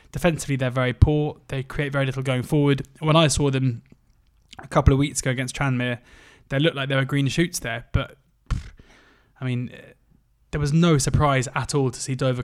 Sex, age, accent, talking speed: male, 20-39, British, 205 wpm